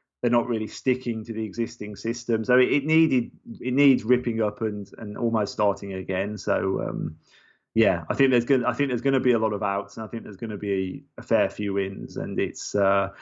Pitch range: 110-125 Hz